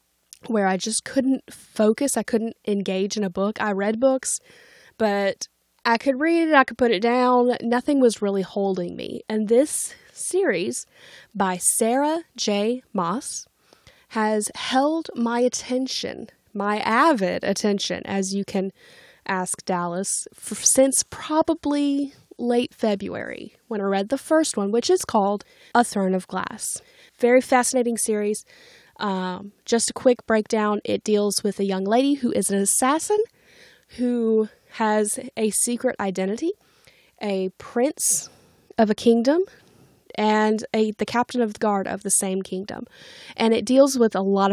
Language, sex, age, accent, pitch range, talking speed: English, female, 10-29, American, 200-255 Hz, 150 wpm